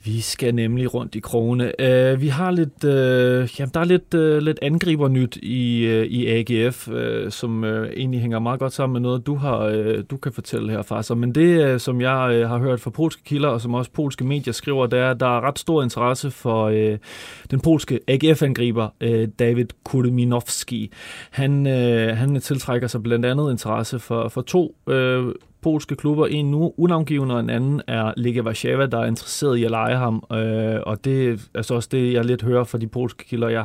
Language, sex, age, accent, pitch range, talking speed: Danish, male, 30-49, native, 115-135 Hz, 210 wpm